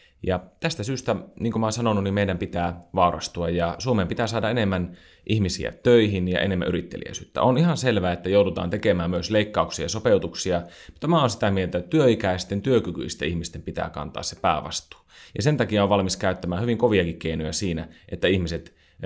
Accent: native